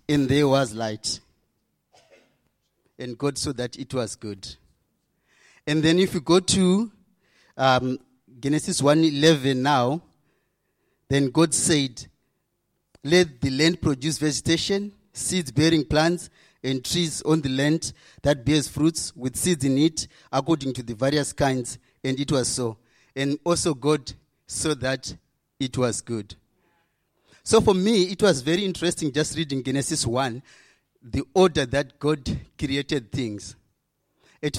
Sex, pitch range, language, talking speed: male, 125-155 Hz, English, 135 wpm